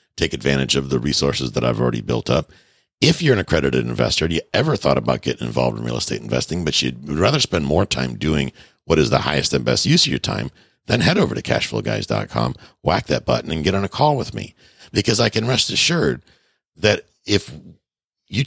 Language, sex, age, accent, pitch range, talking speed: English, male, 60-79, American, 65-105 Hz, 215 wpm